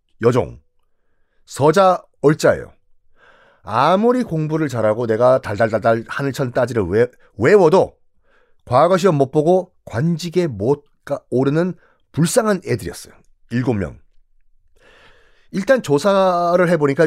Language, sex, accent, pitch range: Korean, male, native, 115-190 Hz